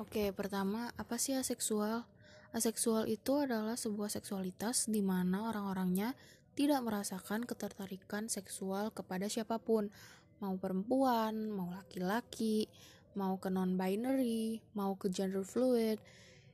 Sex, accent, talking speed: female, native, 110 wpm